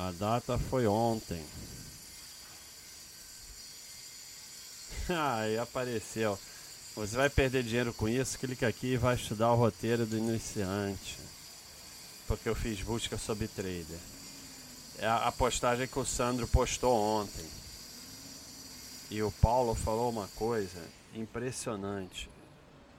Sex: male